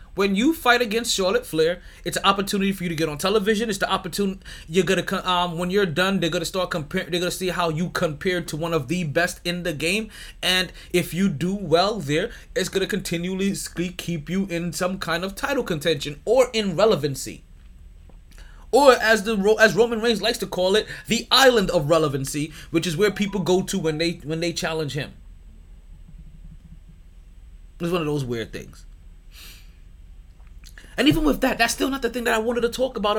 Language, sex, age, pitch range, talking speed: English, male, 20-39, 140-205 Hz, 200 wpm